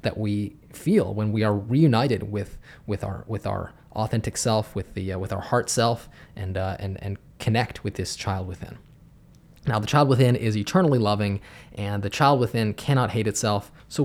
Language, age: English, 20-39